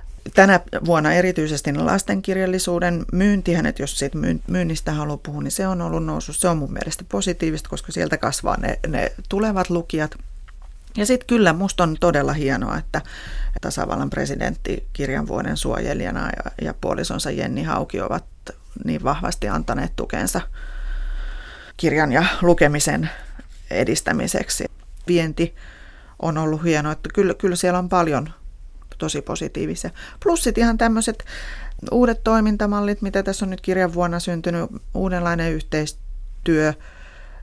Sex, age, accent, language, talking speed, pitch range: female, 30-49, native, Finnish, 130 wpm, 150-195 Hz